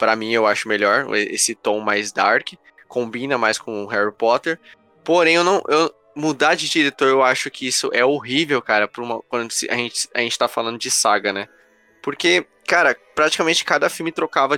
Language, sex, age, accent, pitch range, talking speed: Portuguese, male, 20-39, Brazilian, 110-145 Hz, 185 wpm